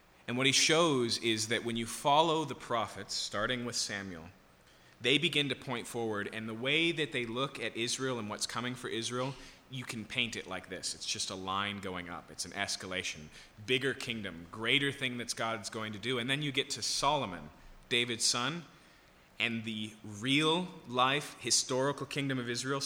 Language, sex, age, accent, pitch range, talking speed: English, male, 30-49, American, 90-125 Hz, 190 wpm